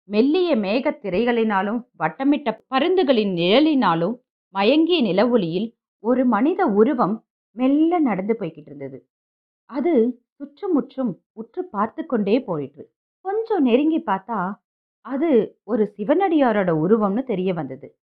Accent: native